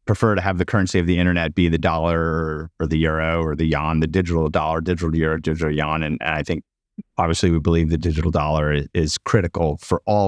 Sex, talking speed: male, 215 wpm